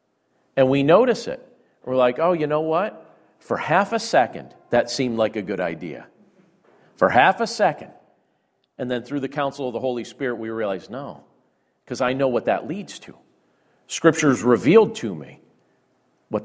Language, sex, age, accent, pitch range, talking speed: English, male, 50-69, American, 140-210 Hz, 175 wpm